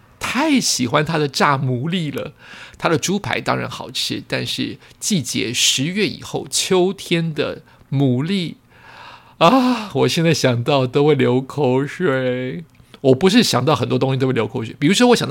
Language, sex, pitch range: Chinese, male, 125-160 Hz